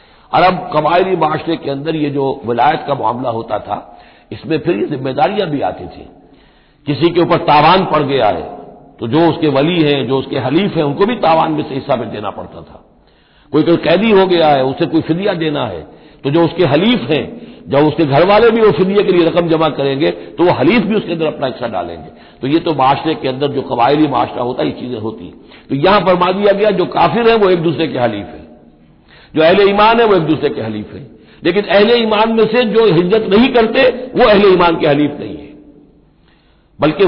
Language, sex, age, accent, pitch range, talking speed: Hindi, male, 60-79, native, 135-180 Hz, 220 wpm